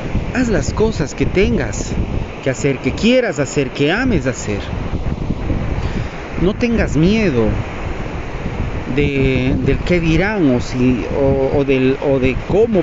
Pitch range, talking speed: 130-220 Hz, 115 wpm